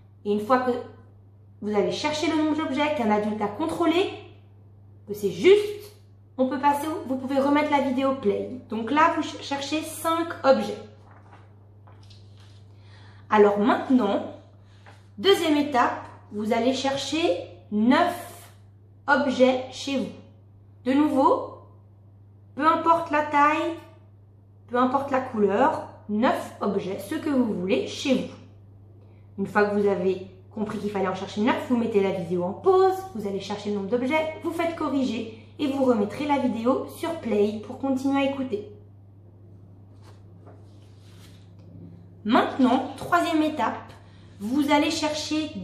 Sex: female